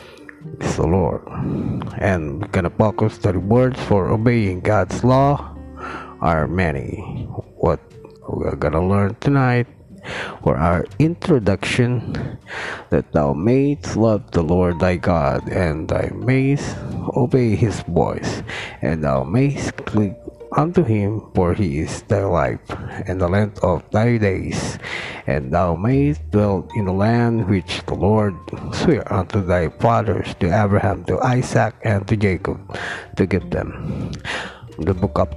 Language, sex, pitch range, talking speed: Filipino, male, 90-120 Hz, 145 wpm